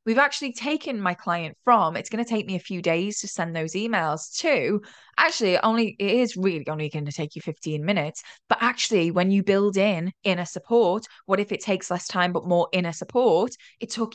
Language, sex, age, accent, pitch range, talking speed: English, female, 10-29, British, 175-230 Hz, 215 wpm